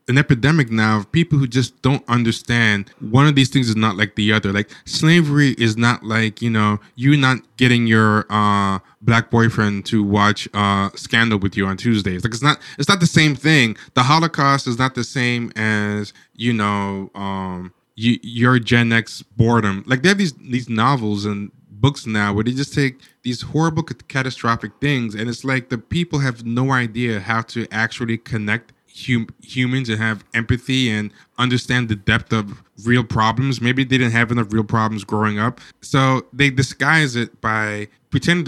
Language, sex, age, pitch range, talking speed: English, male, 20-39, 110-135 Hz, 180 wpm